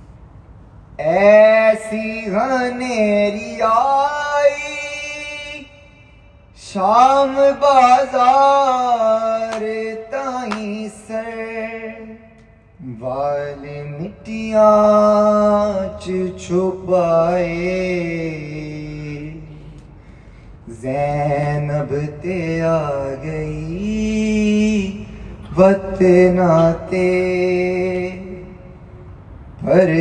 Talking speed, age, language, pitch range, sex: 30 wpm, 20-39, Urdu, 155-250 Hz, male